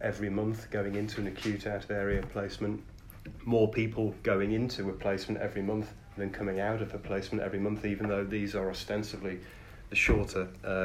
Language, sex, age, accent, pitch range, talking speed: English, male, 30-49, British, 95-110 Hz, 170 wpm